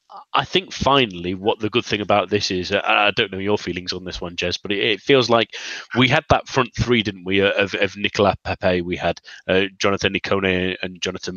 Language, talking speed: English, 225 wpm